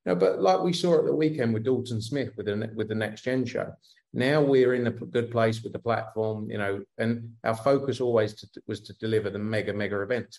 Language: English